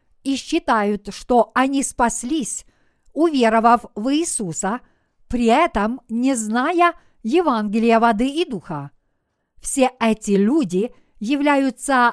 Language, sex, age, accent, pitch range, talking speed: Russian, female, 50-69, native, 220-290 Hz, 100 wpm